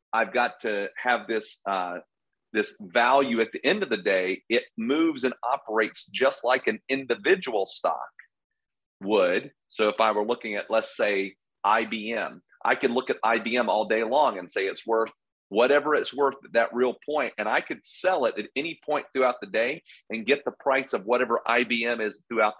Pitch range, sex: 110-135 Hz, male